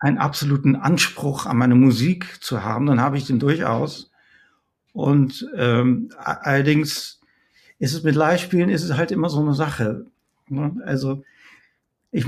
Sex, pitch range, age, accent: male, 130-160 Hz, 50-69, German